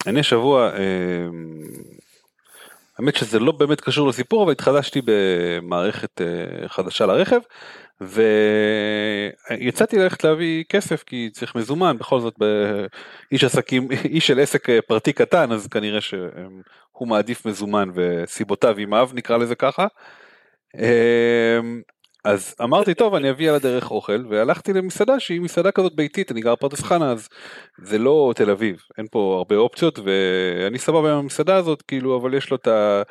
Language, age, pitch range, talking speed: Hebrew, 30-49, 105-145 Hz, 135 wpm